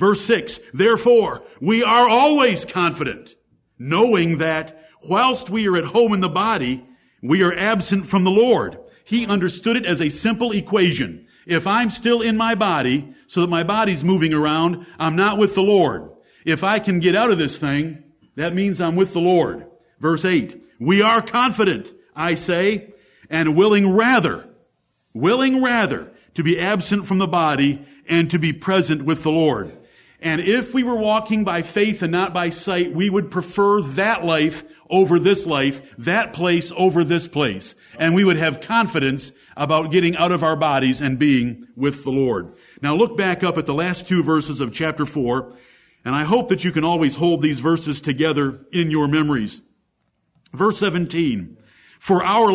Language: English